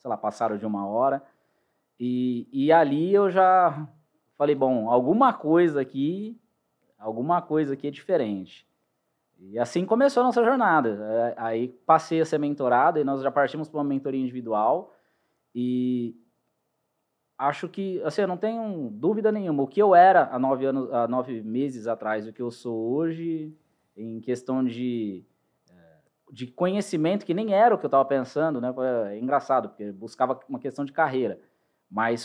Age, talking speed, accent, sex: 20-39, 160 wpm, Brazilian, male